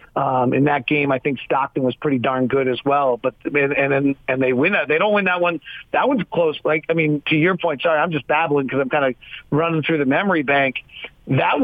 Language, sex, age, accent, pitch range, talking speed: English, male, 40-59, American, 140-170 Hz, 255 wpm